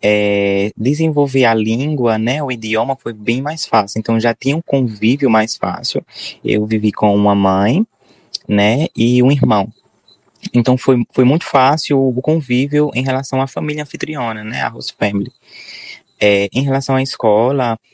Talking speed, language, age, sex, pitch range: 160 wpm, Portuguese, 20-39, male, 105-130 Hz